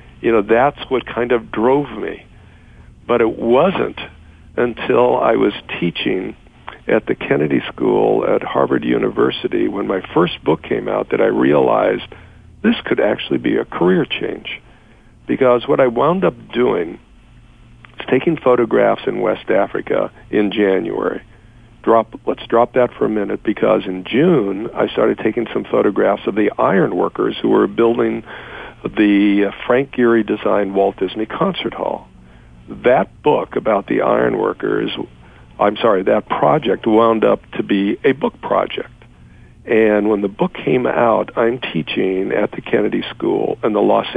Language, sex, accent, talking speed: English, male, American, 150 wpm